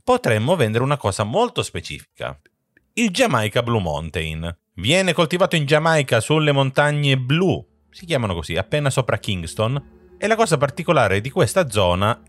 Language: Italian